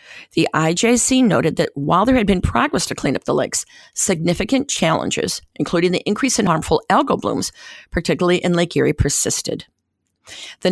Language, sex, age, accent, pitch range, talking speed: English, female, 50-69, American, 155-205 Hz, 160 wpm